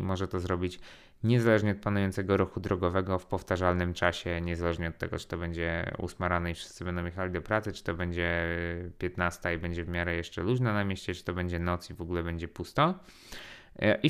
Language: Polish